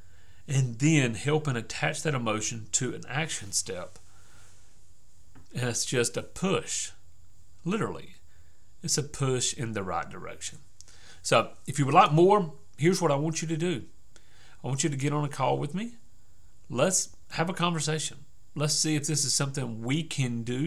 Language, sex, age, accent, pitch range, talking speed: English, male, 40-59, American, 100-150 Hz, 175 wpm